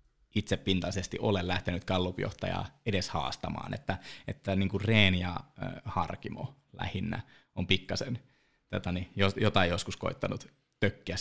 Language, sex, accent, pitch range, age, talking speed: Finnish, male, native, 90-110 Hz, 20-39, 120 wpm